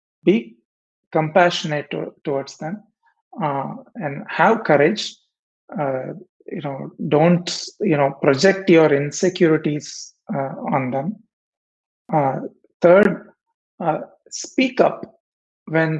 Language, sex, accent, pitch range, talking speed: Tamil, male, native, 155-200 Hz, 100 wpm